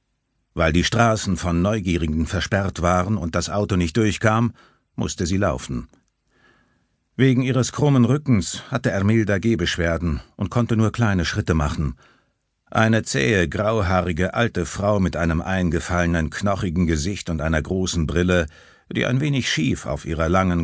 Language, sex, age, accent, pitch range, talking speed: German, male, 60-79, German, 85-115 Hz, 140 wpm